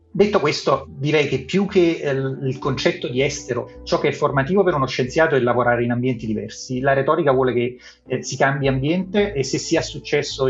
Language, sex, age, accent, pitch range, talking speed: Italian, male, 30-49, native, 120-145 Hz, 205 wpm